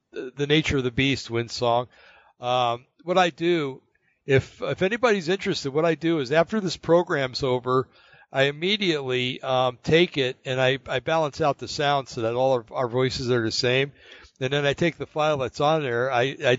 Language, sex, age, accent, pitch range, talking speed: English, male, 60-79, American, 120-145 Hz, 200 wpm